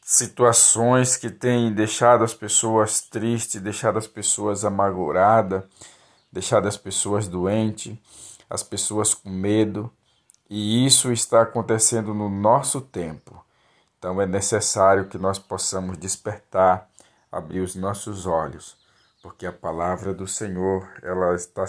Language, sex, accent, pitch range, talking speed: Portuguese, male, Brazilian, 90-105 Hz, 120 wpm